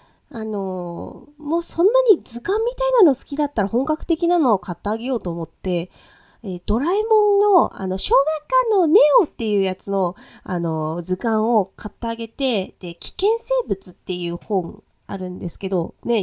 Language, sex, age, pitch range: Japanese, female, 20-39, 180-255 Hz